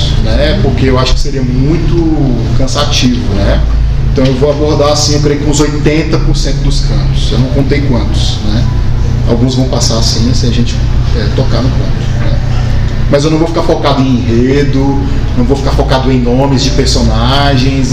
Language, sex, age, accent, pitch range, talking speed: Portuguese, male, 20-39, Brazilian, 120-135 Hz, 180 wpm